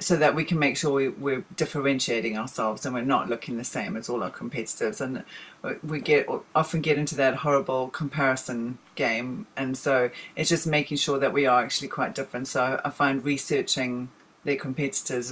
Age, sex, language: 40-59, female, English